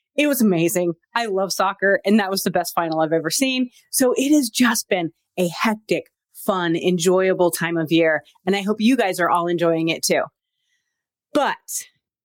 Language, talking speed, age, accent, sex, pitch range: English, 185 wpm, 30-49, American, female, 175-250 Hz